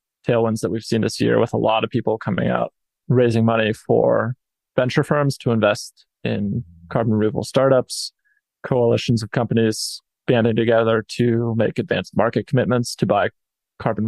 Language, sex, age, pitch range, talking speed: English, male, 20-39, 110-125 Hz, 160 wpm